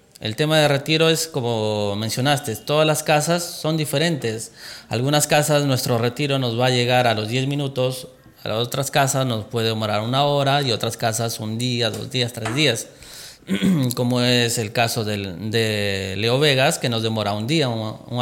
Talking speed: 190 wpm